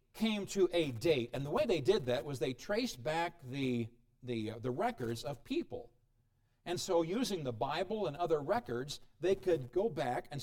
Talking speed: 195 wpm